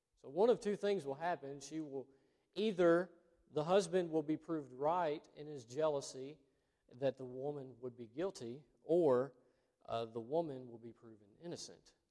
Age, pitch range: 40-59, 115-165 Hz